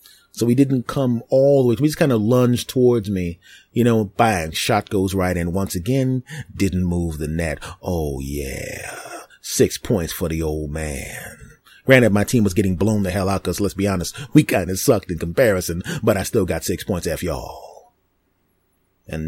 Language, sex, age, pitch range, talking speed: English, male, 30-49, 90-115 Hz, 195 wpm